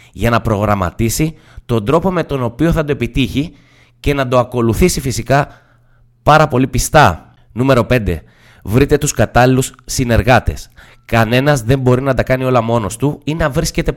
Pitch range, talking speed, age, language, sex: 115-145 Hz, 160 wpm, 20-39, Greek, male